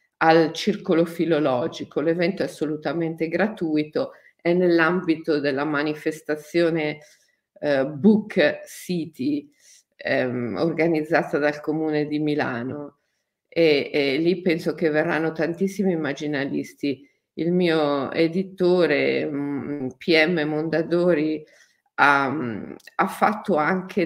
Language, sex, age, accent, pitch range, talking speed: Italian, female, 50-69, native, 150-185 Hz, 90 wpm